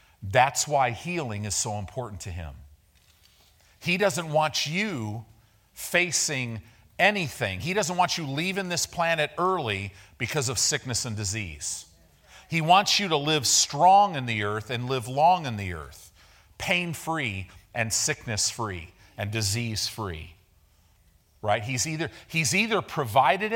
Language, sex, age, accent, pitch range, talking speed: English, male, 40-59, American, 95-160 Hz, 130 wpm